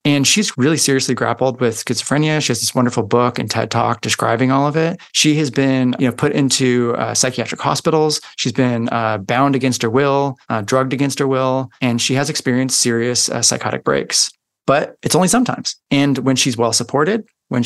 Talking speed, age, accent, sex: 195 wpm, 20-39, American, male